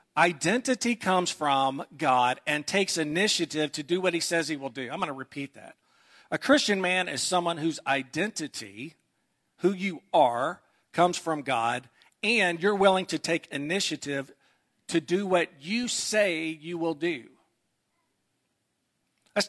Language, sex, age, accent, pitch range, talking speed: English, male, 50-69, American, 150-190 Hz, 150 wpm